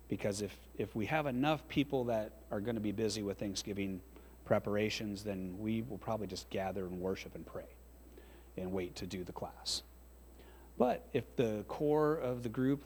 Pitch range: 95-115 Hz